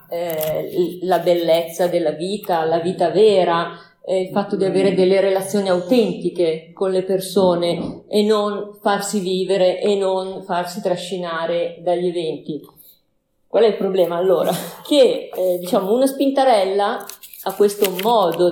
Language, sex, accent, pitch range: Italian, female, native, 170-210 Hz